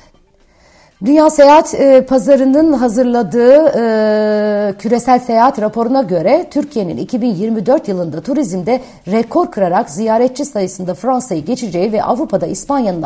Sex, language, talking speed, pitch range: female, Turkish, 105 wpm, 190-245 Hz